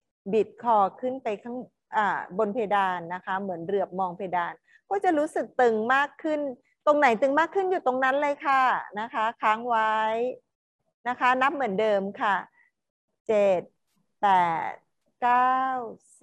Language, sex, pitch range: Thai, female, 200-265 Hz